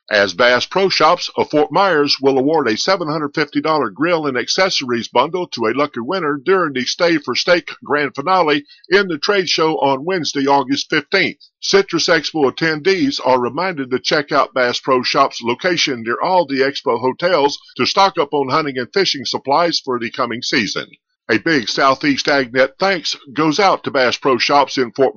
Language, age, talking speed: English, 50-69, 180 wpm